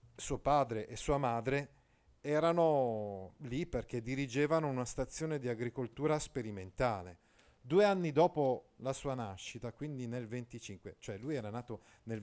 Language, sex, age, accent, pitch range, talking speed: Italian, male, 40-59, native, 110-150 Hz, 135 wpm